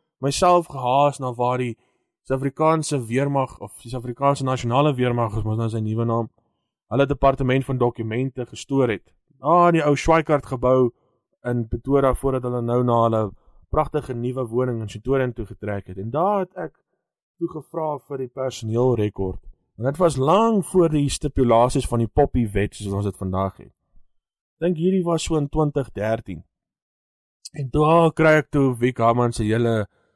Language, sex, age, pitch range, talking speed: English, male, 20-39, 110-140 Hz, 155 wpm